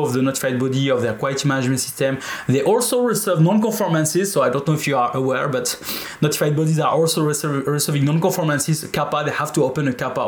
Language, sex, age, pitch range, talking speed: English, male, 20-39, 130-160 Hz, 205 wpm